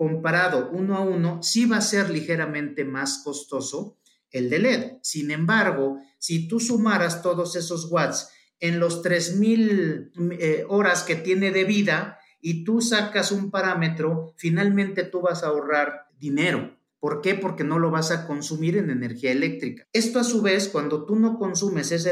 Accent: Mexican